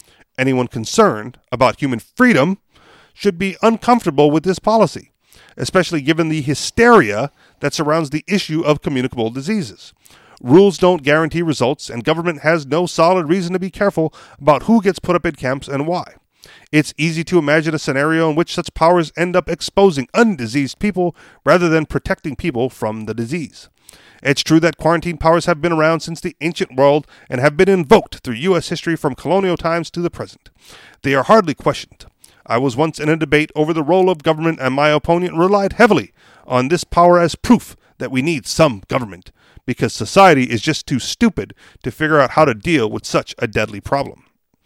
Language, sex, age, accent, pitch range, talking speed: English, male, 40-59, American, 140-185 Hz, 185 wpm